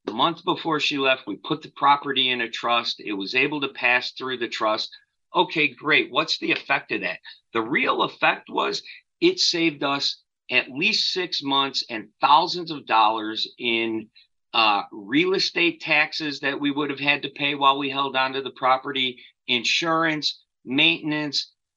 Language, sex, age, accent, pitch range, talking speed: English, male, 50-69, American, 125-165 Hz, 175 wpm